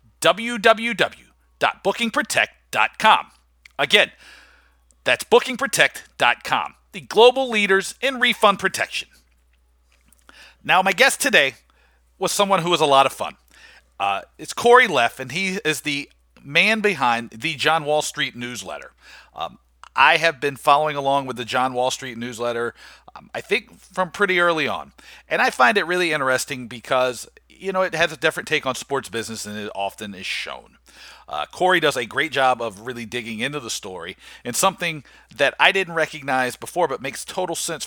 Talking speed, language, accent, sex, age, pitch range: 160 wpm, English, American, male, 40-59, 125-185 Hz